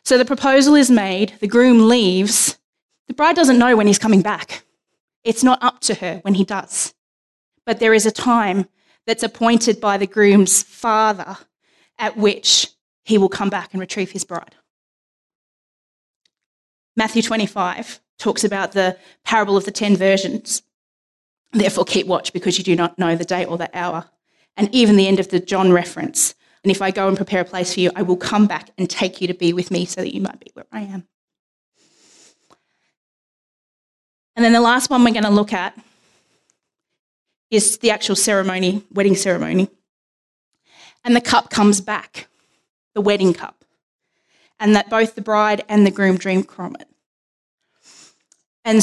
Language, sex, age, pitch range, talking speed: English, female, 20-39, 190-225 Hz, 175 wpm